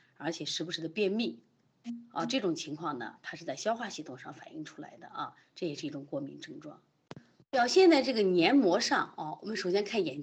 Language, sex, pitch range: Chinese, female, 165-235 Hz